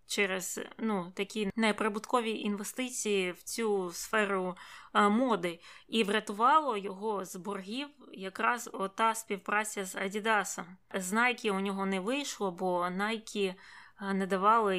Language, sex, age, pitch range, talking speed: Ukrainian, female, 20-39, 185-215 Hz, 120 wpm